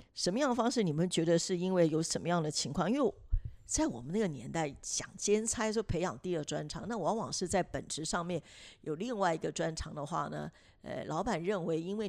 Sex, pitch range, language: female, 160-215 Hz, Chinese